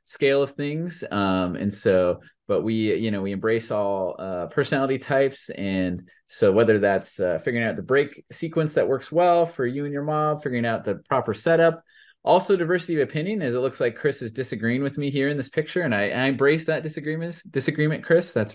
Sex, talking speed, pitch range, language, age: male, 210 wpm, 100-130 Hz, English, 30-49